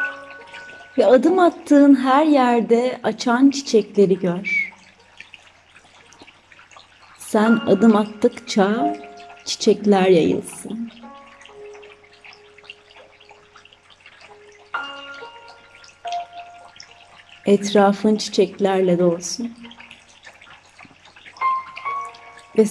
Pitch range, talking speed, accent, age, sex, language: 195-275 Hz, 45 wpm, native, 30-49, female, Turkish